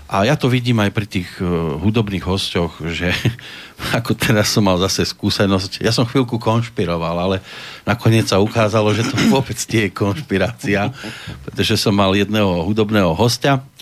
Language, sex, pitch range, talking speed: Slovak, male, 95-120 Hz, 155 wpm